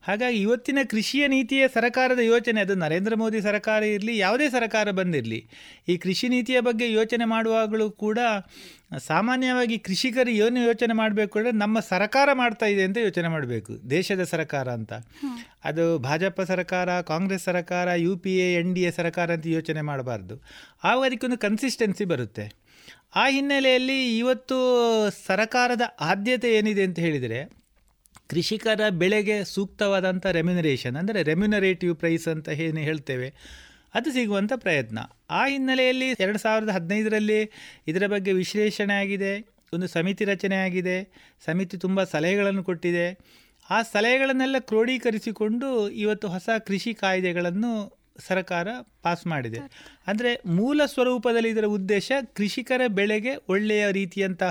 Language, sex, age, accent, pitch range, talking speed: Kannada, male, 30-49, native, 175-230 Hz, 120 wpm